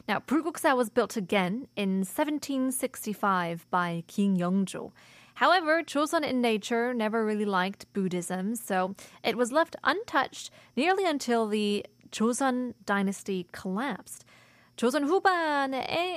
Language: Korean